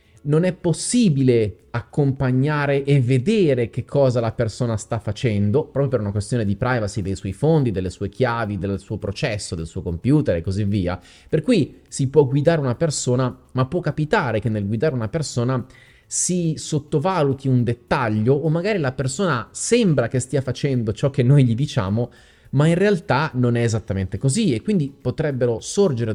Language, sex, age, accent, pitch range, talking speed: Italian, male, 30-49, native, 120-155 Hz, 175 wpm